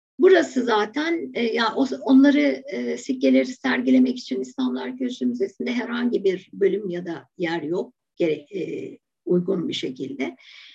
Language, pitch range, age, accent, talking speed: Turkish, 175-285 Hz, 60-79, native, 115 wpm